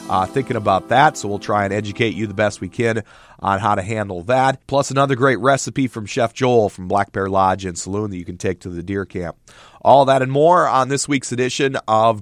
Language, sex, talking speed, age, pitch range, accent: English, male, 240 wpm, 40-59, 100-135 Hz, American